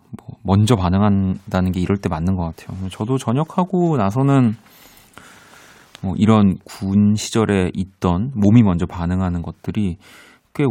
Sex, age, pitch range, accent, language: male, 30-49, 95-125 Hz, native, Korean